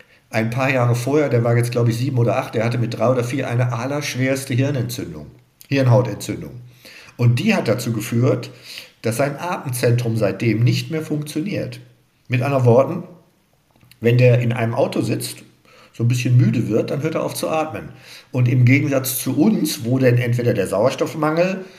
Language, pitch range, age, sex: German, 115-140 Hz, 50-69, male